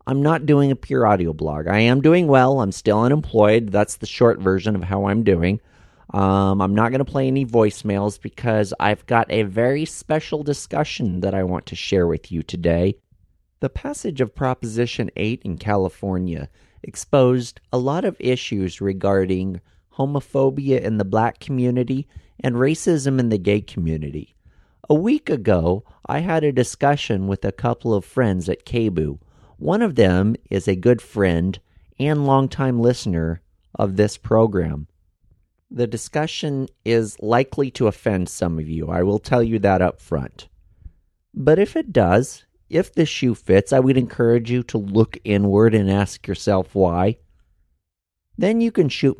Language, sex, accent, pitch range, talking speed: English, male, American, 90-125 Hz, 165 wpm